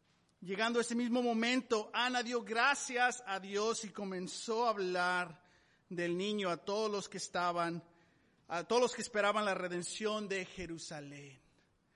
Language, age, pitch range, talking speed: Spanish, 40-59, 185-230 Hz, 150 wpm